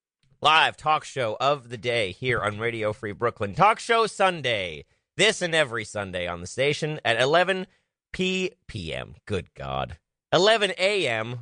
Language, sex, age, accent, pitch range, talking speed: English, male, 30-49, American, 110-170 Hz, 145 wpm